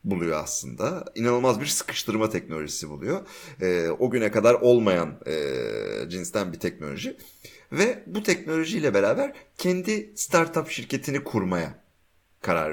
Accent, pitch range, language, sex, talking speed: native, 95-140 Hz, Turkish, male, 120 wpm